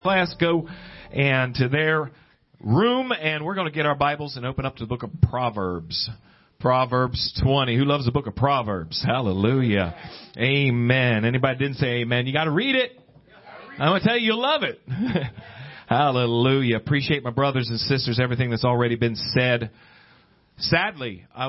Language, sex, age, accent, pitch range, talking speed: English, male, 40-59, American, 105-135 Hz, 170 wpm